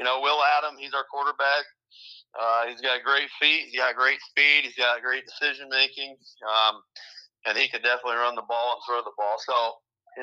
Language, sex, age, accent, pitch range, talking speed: English, male, 30-49, American, 120-150 Hz, 205 wpm